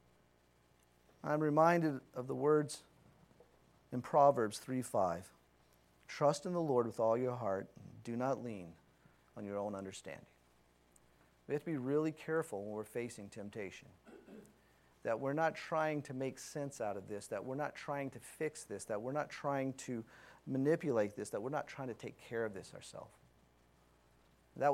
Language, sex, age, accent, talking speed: English, male, 40-59, American, 165 wpm